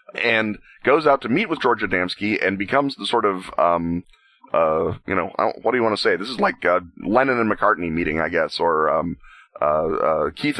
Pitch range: 100-120 Hz